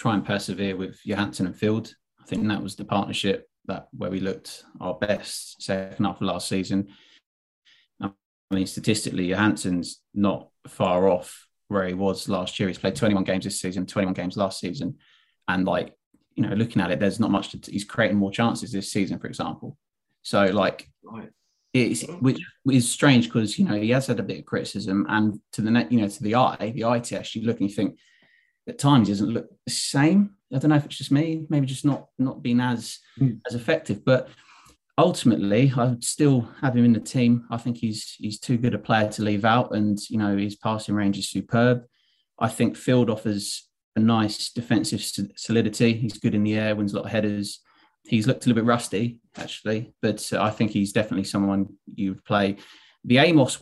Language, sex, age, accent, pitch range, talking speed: English, male, 20-39, British, 100-120 Hz, 205 wpm